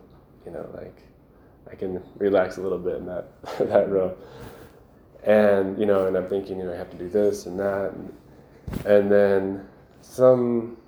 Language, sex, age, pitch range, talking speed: English, male, 20-39, 95-105 Hz, 175 wpm